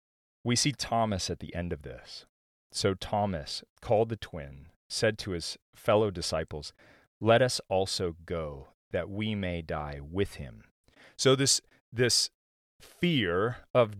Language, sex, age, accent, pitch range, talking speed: English, male, 30-49, American, 90-125 Hz, 140 wpm